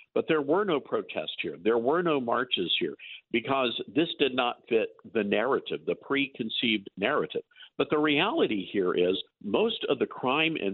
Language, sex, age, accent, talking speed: English, male, 50-69, American, 175 wpm